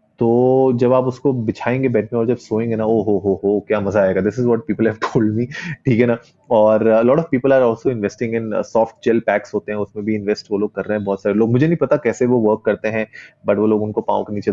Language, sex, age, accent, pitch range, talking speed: Hindi, male, 30-49, native, 100-120 Hz, 250 wpm